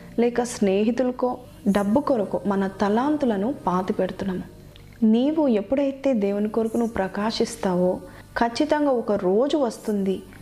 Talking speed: 100 wpm